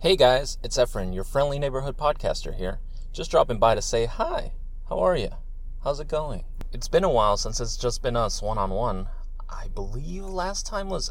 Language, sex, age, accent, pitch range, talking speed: English, male, 20-39, American, 95-135 Hz, 195 wpm